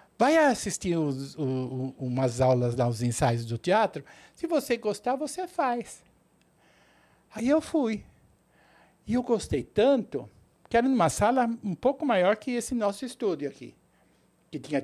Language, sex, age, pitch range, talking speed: Portuguese, male, 60-79, 140-230 Hz, 150 wpm